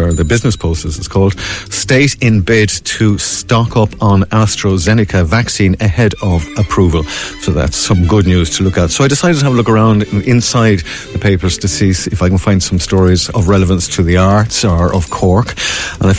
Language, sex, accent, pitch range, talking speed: English, male, Irish, 90-110 Hz, 205 wpm